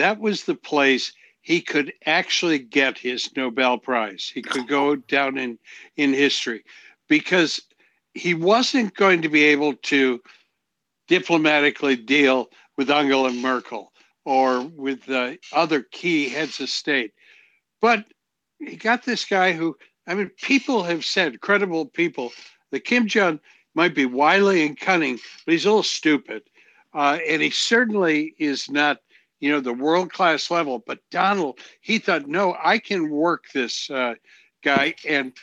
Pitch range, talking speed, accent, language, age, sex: 135-190 Hz, 150 wpm, American, English, 60-79, male